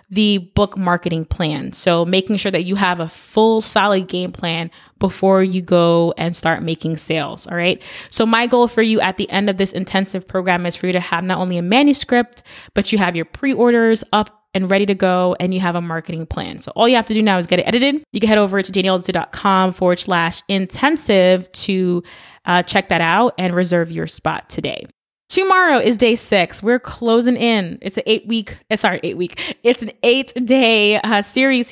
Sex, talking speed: female, 200 wpm